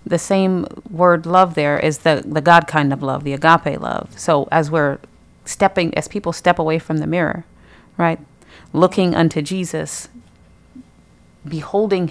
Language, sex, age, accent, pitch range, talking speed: English, female, 30-49, American, 145-165 Hz, 155 wpm